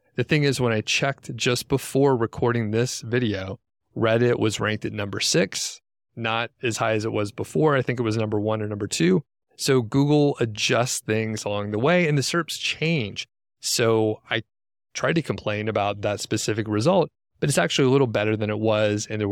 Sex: male